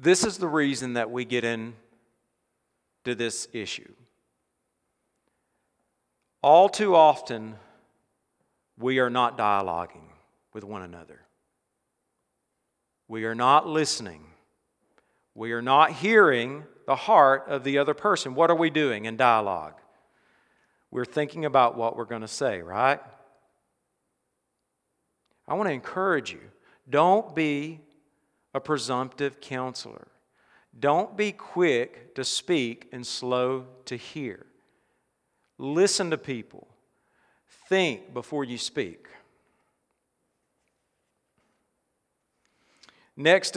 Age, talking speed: 40-59, 105 wpm